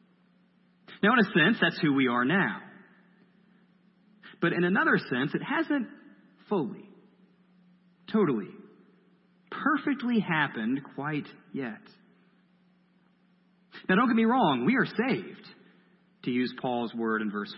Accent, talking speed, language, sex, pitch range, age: American, 120 wpm, English, male, 180-205 Hz, 40-59